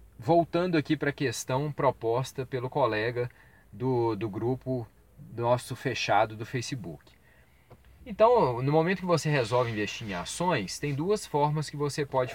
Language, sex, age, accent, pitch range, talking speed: Portuguese, male, 30-49, Brazilian, 120-180 Hz, 145 wpm